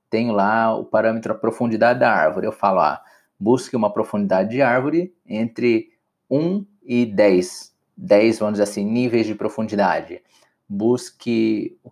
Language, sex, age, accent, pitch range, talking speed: Portuguese, male, 20-39, Brazilian, 105-125 Hz, 145 wpm